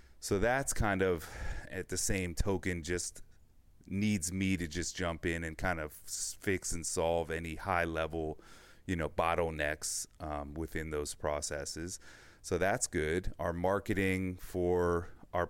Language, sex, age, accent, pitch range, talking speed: English, male, 30-49, American, 80-100 Hz, 145 wpm